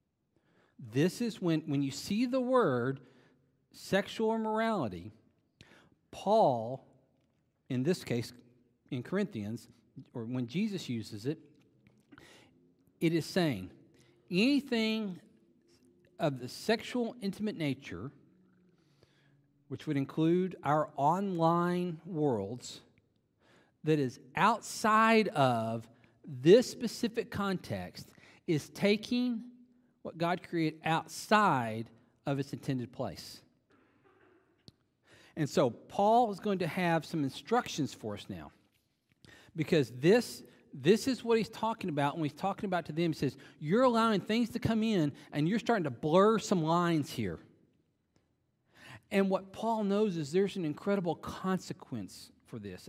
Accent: American